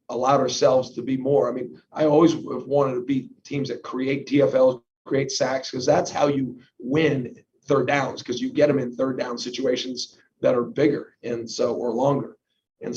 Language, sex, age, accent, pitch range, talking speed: English, male, 40-59, American, 130-150 Hz, 195 wpm